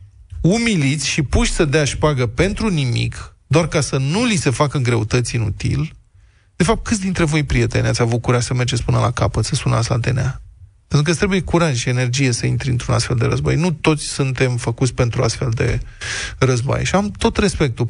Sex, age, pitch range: male, 20-39, 120-160 Hz